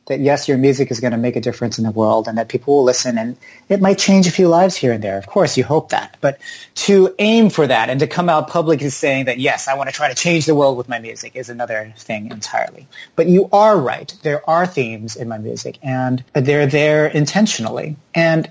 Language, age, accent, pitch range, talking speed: English, 30-49, American, 120-160 Hz, 245 wpm